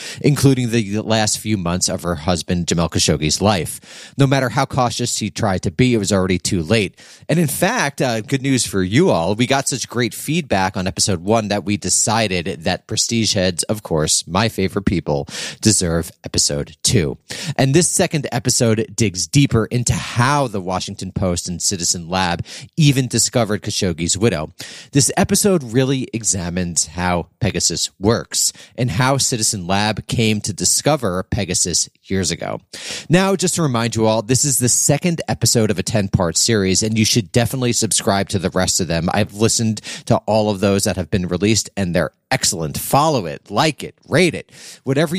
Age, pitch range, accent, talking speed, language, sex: 30-49, 95-125 Hz, American, 180 wpm, English, male